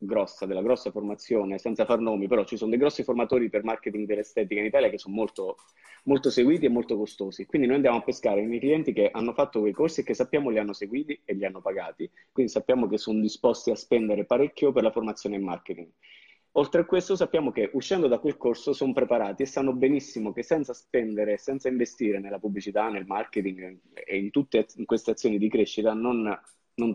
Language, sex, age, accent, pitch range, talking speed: Italian, male, 20-39, native, 105-130 Hz, 205 wpm